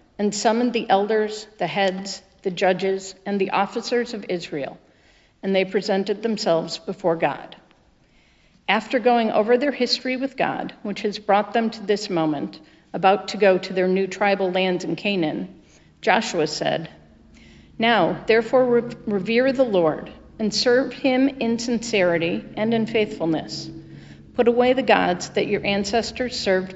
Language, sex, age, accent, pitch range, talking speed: English, female, 50-69, American, 185-225 Hz, 150 wpm